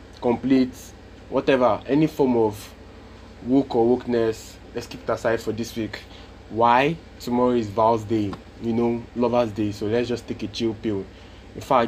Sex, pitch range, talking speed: male, 95-120 Hz, 165 wpm